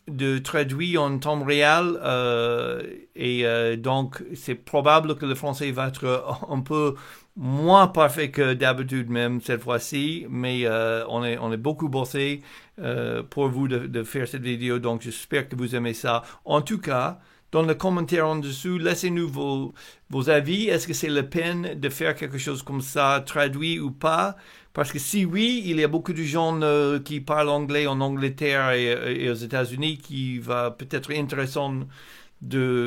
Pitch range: 125-150 Hz